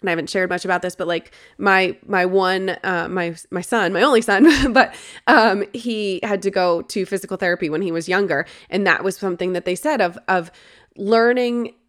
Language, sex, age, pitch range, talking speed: English, female, 20-39, 180-210 Hz, 210 wpm